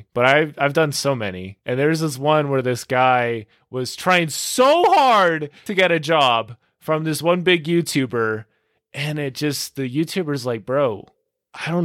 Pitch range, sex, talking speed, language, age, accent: 105-140 Hz, male, 175 wpm, English, 20-39, American